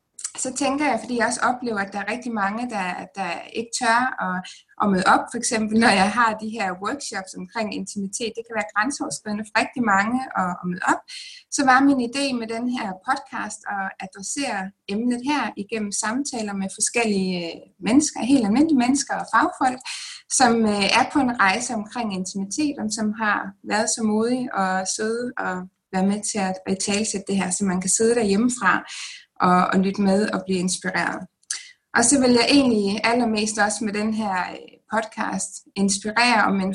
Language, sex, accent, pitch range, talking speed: Danish, female, native, 195-250 Hz, 180 wpm